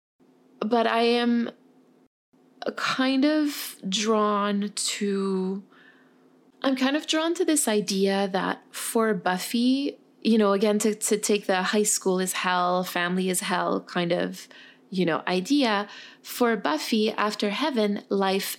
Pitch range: 185-240 Hz